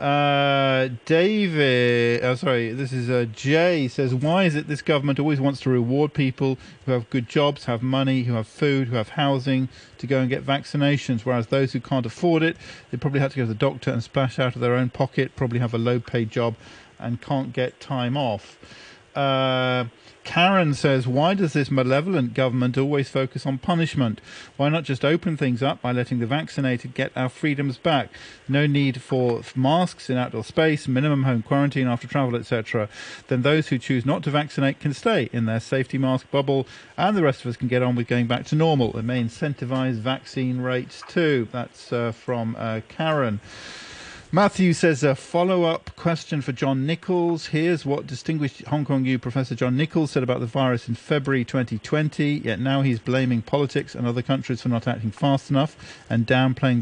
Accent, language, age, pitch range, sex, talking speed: British, English, 40-59, 125-145 Hz, male, 195 wpm